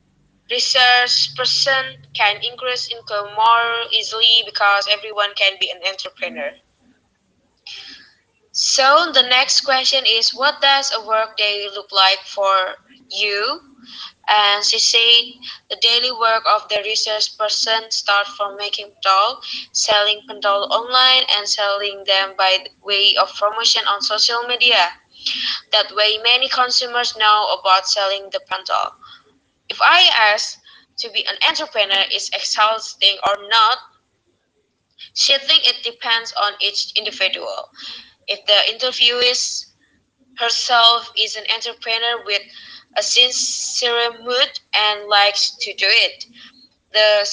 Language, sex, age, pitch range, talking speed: Indonesian, female, 20-39, 205-255 Hz, 120 wpm